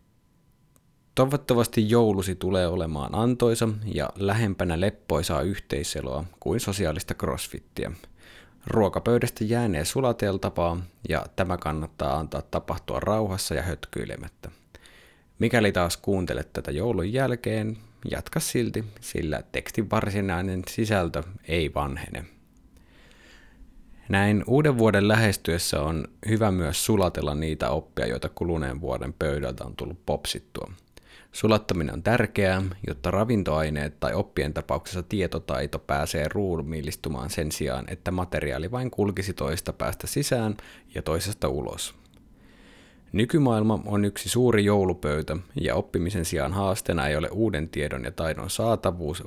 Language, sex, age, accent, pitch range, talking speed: Finnish, male, 30-49, native, 80-110 Hz, 115 wpm